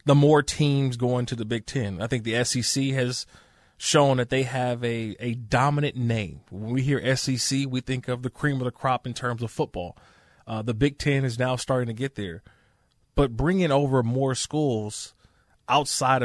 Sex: male